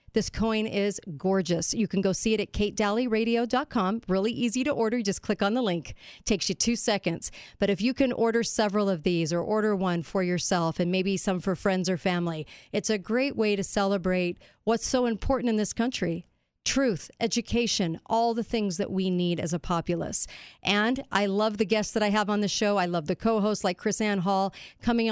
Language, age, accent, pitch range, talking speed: English, 40-59, American, 180-215 Hz, 210 wpm